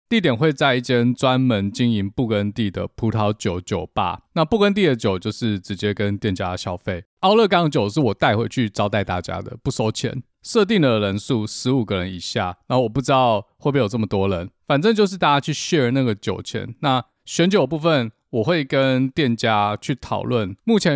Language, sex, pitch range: Chinese, male, 105-145 Hz